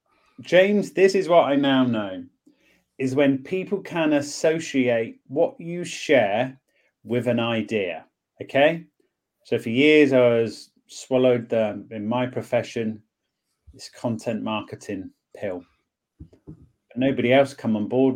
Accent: British